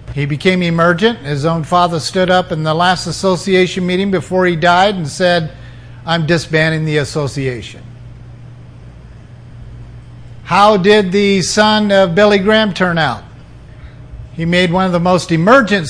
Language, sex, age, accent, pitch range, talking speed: English, male, 50-69, American, 145-185 Hz, 145 wpm